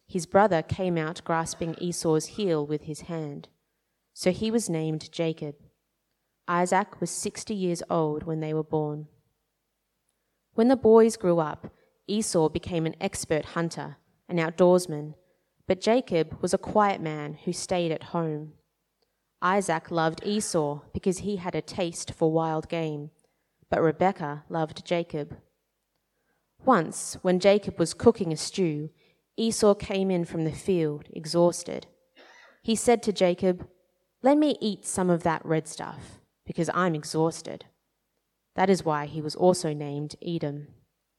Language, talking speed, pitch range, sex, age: English, 145 wpm, 155-185 Hz, female, 30-49